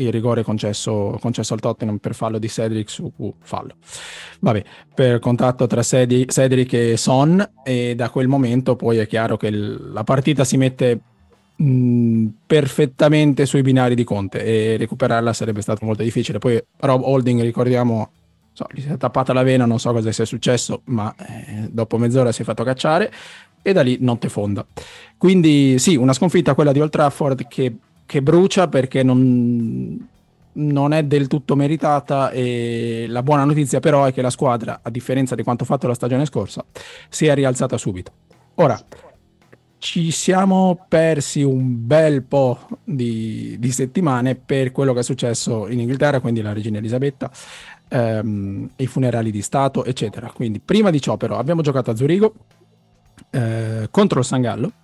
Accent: native